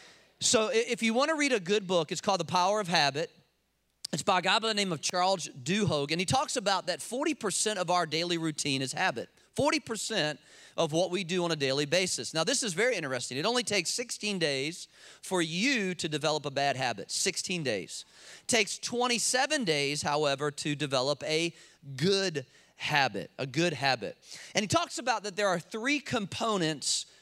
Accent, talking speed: American, 190 wpm